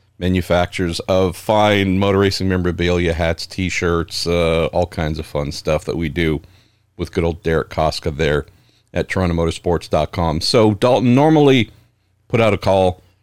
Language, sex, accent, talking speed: English, male, American, 145 wpm